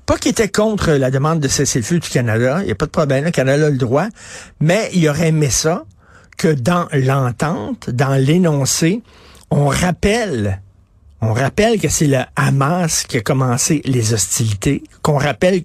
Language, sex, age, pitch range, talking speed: French, male, 50-69, 135-180 Hz, 185 wpm